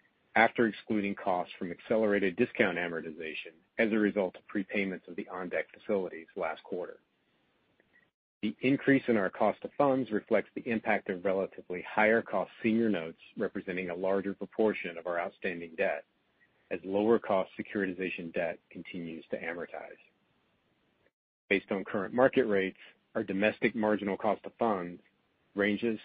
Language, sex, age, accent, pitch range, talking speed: English, male, 40-59, American, 95-115 Hz, 140 wpm